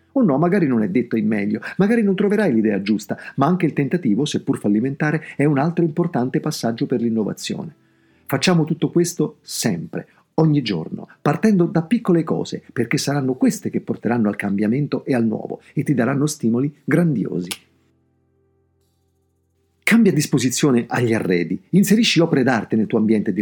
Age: 50-69